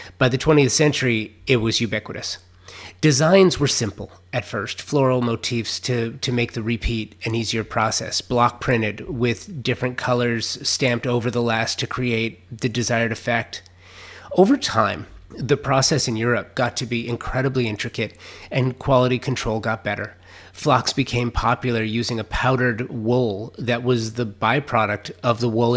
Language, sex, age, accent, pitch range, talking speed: English, male, 30-49, American, 110-130 Hz, 155 wpm